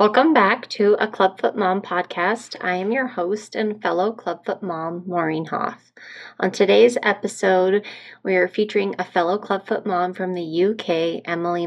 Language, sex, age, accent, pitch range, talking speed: English, female, 20-39, American, 170-200 Hz, 160 wpm